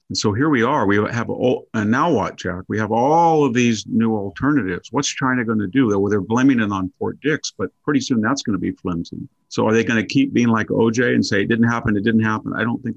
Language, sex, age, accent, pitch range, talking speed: English, male, 50-69, American, 95-115 Hz, 265 wpm